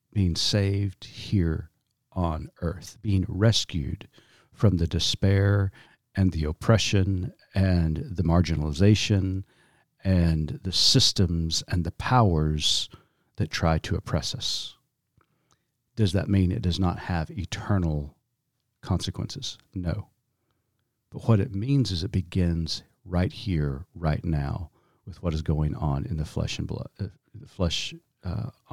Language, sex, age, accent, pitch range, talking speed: English, male, 50-69, American, 90-120 Hz, 130 wpm